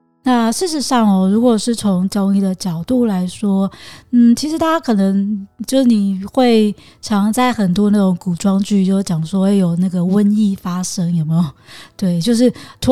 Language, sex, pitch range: Chinese, female, 180-215 Hz